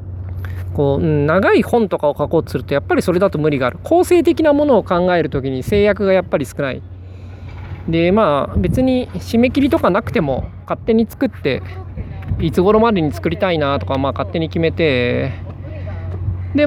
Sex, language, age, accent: male, Japanese, 20-39, native